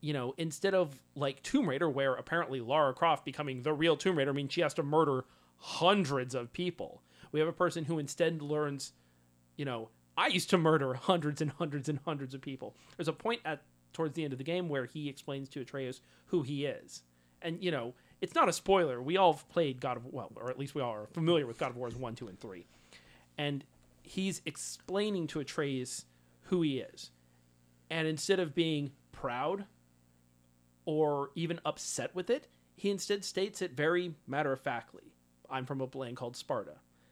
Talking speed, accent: 195 wpm, American